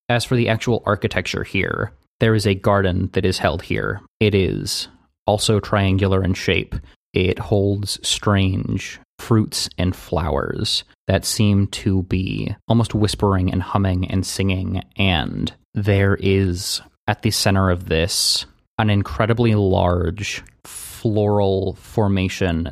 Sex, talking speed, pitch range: male, 130 wpm, 95-105 Hz